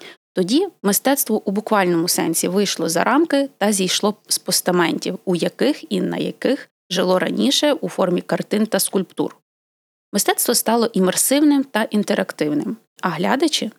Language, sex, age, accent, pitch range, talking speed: Ukrainian, female, 20-39, native, 180-235 Hz, 135 wpm